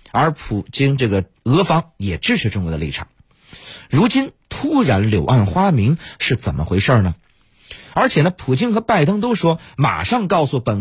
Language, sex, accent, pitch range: Chinese, male, native, 110-170 Hz